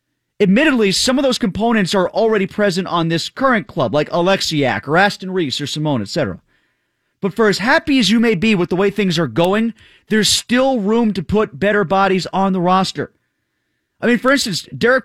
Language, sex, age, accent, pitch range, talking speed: English, male, 30-49, American, 180-230 Hz, 195 wpm